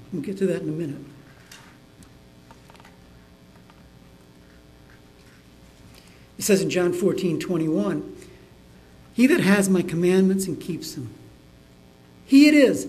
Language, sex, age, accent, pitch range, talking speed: English, male, 60-79, American, 140-195 Hz, 110 wpm